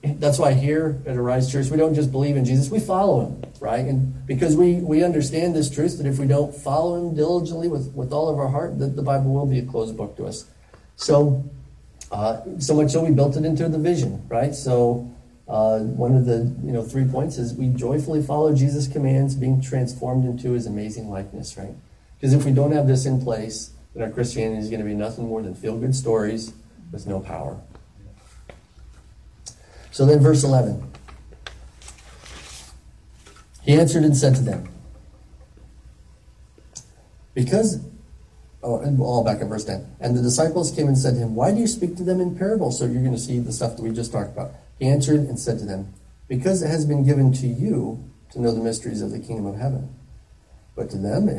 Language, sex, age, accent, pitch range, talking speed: English, male, 40-59, American, 110-145 Hz, 205 wpm